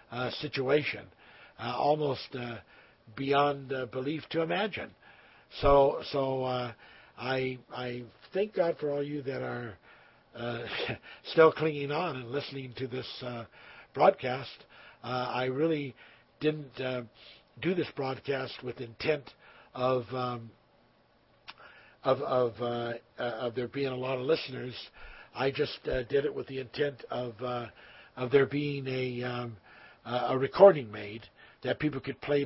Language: English